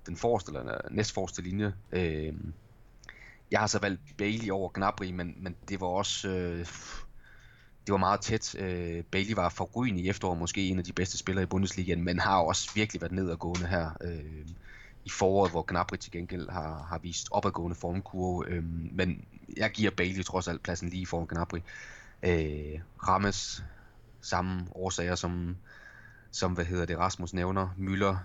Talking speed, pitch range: 165 wpm, 85-95 Hz